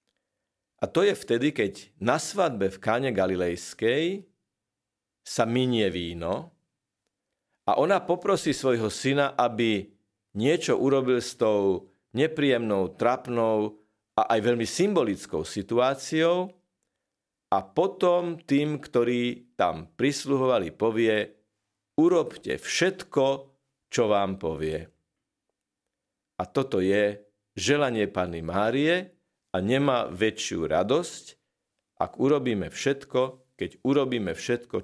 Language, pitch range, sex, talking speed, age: Slovak, 105-145 Hz, male, 100 wpm, 50-69